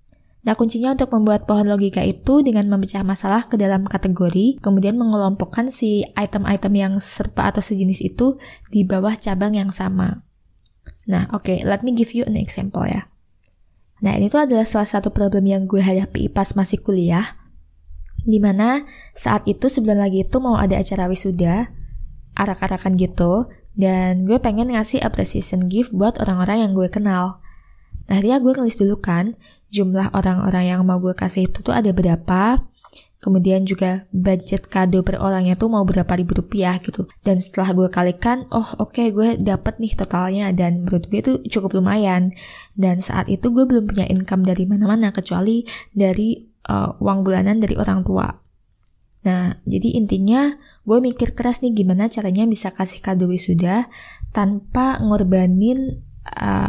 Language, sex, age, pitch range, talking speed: Indonesian, female, 20-39, 185-220 Hz, 160 wpm